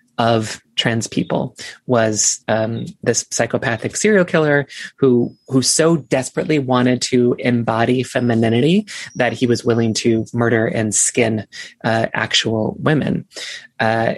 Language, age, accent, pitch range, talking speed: English, 20-39, American, 115-135 Hz, 125 wpm